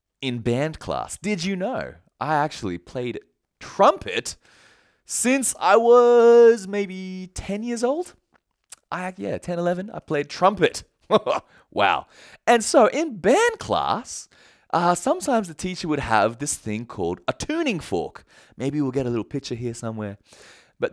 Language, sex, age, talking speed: English, male, 20-39, 145 wpm